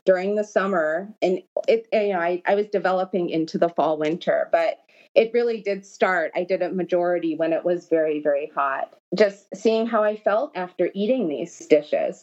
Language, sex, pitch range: English, female, 175-215 Hz